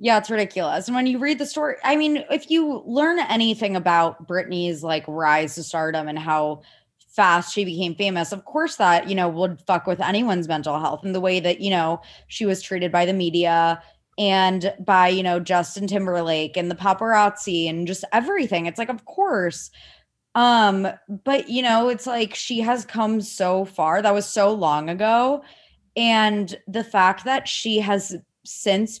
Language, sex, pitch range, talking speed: English, female, 175-225 Hz, 185 wpm